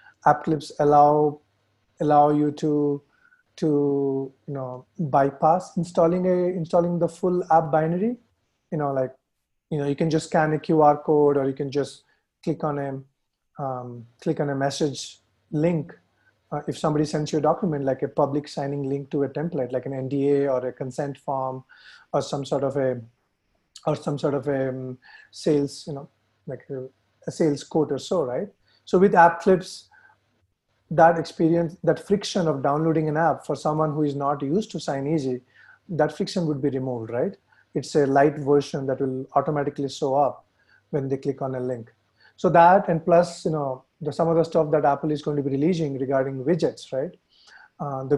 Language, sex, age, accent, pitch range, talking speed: English, male, 30-49, Indian, 135-165 Hz, 185 wpm